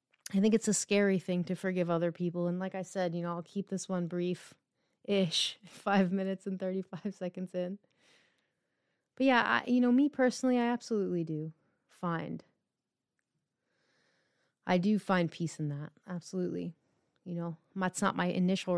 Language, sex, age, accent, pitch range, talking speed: English, female, 30-49, American, 175-195 Hz, 160 wpm